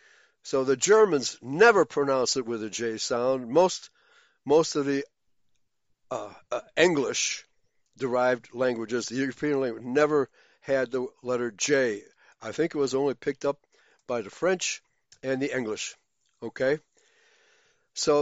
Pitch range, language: 135-210 Hz, English